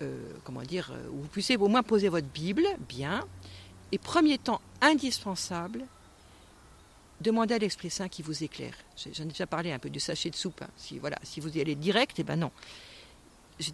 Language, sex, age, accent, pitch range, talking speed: French, female, 50-69, French, 175-260 Hz, 195 wpm